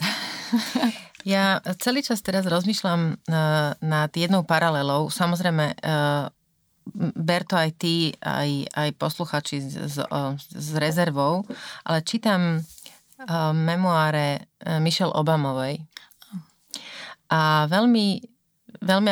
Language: Slovak